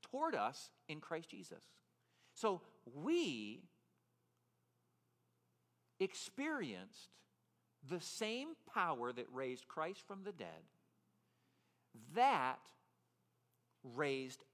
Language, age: English, 50-69